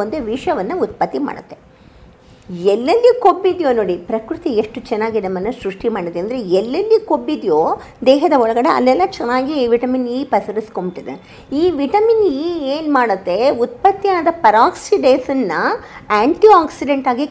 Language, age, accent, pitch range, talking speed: Kannada, 50-69, native, 205-295 Hz, 110 wpm